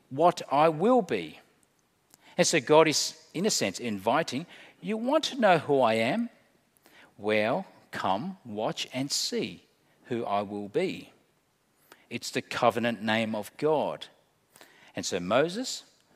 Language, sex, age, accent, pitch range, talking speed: English, male, 50-69, Australian, 130-215 Hz, 135 wpm